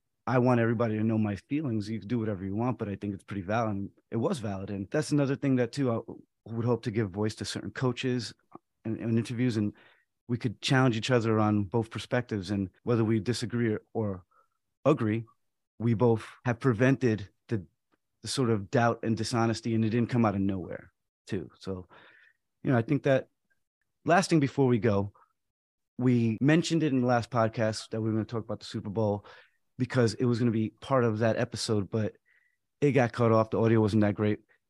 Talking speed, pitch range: 210 wpm, 110-125 Hz